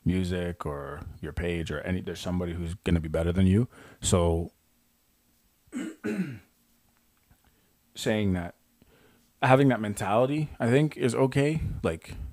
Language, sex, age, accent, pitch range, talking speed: English, male, 30-49, American, 85-105 Hz, 125 wpm